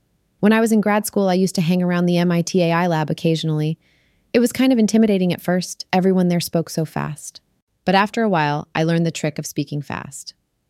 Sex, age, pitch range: female, 30-49, 155-190 Hz